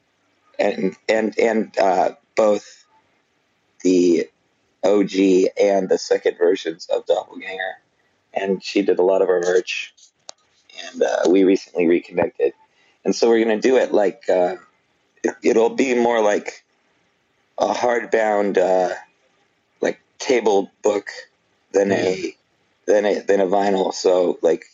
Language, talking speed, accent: English, 130 wpm, American